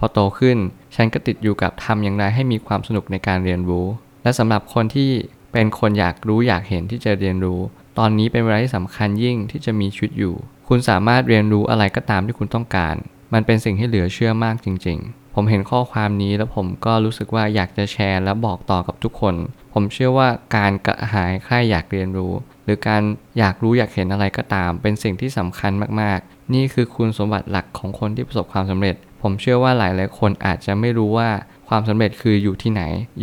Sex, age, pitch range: male, 20-39, 100-115 Hz